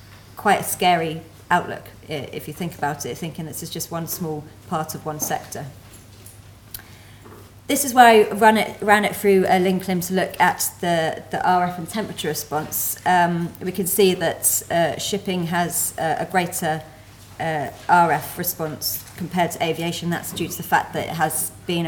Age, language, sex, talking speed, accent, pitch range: 30-49, English, female, 175 wpm, British, 150-185 Hz